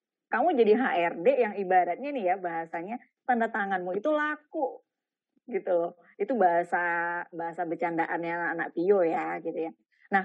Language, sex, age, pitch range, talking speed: Indonesian, female, 20-39, 185-270 Hz, 140 wpm